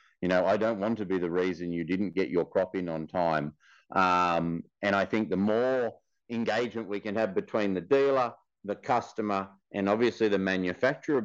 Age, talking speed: 40-59, 190 wpm